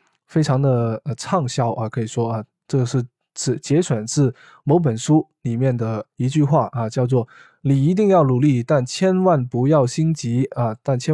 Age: 20-39